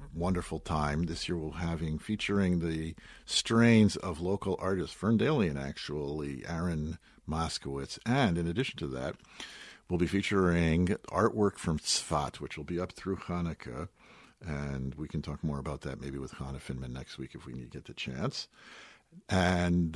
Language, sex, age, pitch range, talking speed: English, male, 50-69, 70-90 Hz, 160 wpm